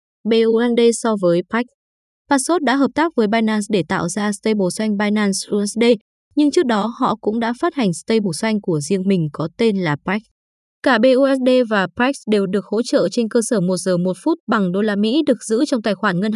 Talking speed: 210 wpm